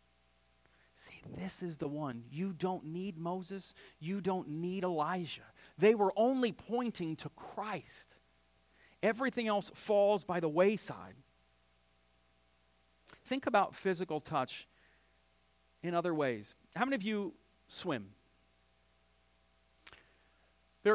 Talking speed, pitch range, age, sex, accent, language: 110 wpm, 120-185 Hz, 40-59, male, American, English